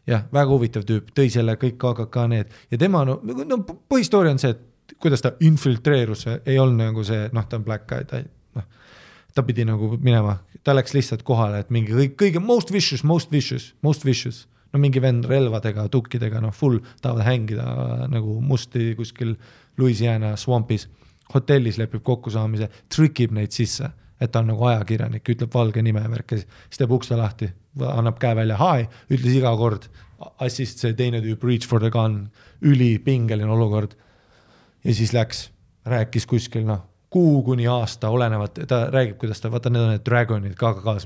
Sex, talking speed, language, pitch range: male, 180 wpm, English, 110-130 Hz